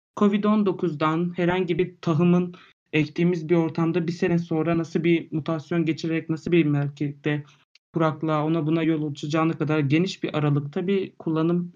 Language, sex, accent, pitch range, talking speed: Turkish, male, native, 140-175 Hz, 145 wpm